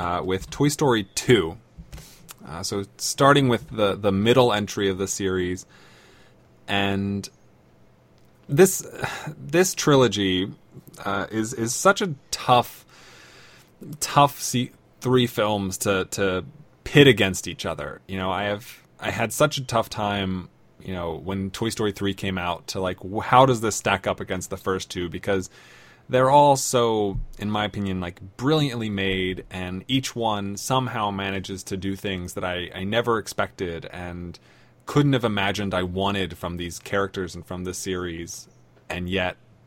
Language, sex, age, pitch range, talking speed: English, male, 20-39, 95-125 Hz, 155 wpm